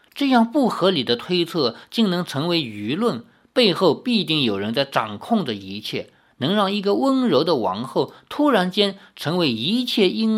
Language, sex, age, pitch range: Chinese, male, 50-69, 155-240 Hz